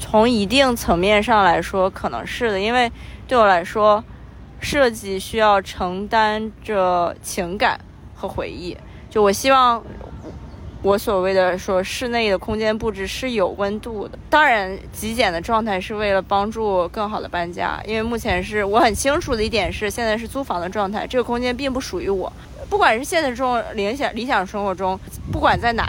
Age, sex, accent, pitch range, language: 20-39, female, native, 190-235 Hz, Chinese